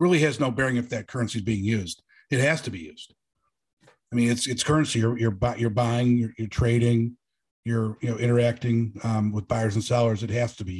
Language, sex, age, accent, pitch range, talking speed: English, male, 50-69, American, 115-130 Hz, 220 wpm